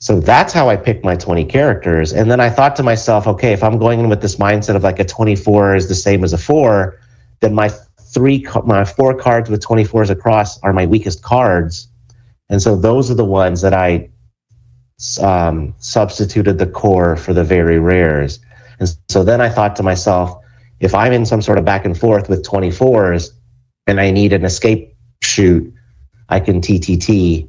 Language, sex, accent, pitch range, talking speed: English, male, American, 85-115 Hz, 190 wpm